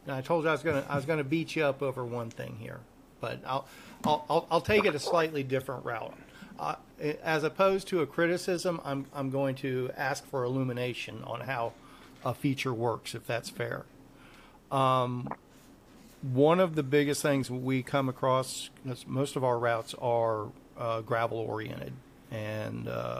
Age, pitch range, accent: 40-59, 125-150 Hz, American